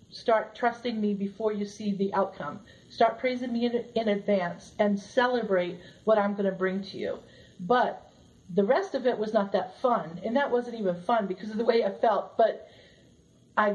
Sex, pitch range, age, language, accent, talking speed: female, 205-265 Hz, 40-59, English, American, 195 wpm